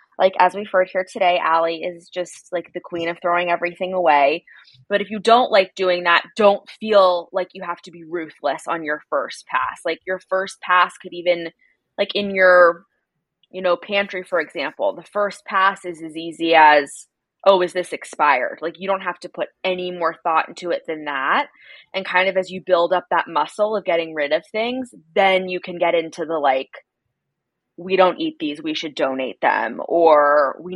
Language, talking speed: English, 205 wpm